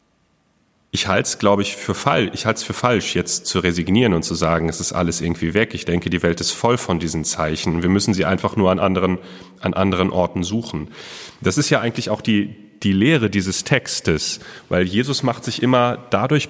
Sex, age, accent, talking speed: male, 10-29, German, 195 wpm